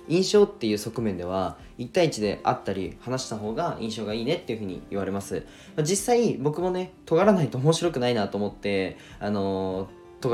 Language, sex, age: Japanese, male, 20-39